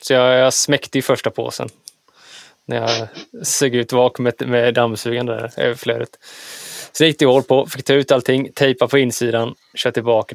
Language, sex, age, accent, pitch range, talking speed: Swedish, male, 20-39, native, 115-135 Hz, 175 wpm